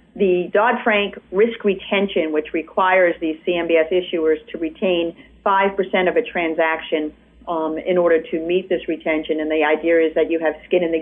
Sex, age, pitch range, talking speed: female, 40-59, 160-200 Hz, 185 wpm